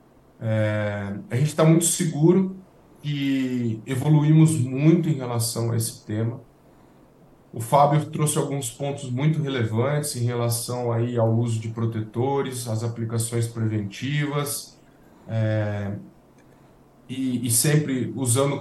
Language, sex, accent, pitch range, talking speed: Portuguese, male, Brazilian, 115-160 Hz, 115 wpm